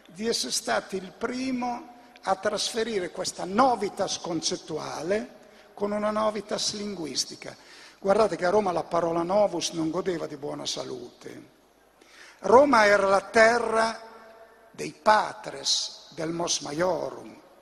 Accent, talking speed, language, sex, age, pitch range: native, 120 wpm, Italian, male, 60-79, 185-230 Hz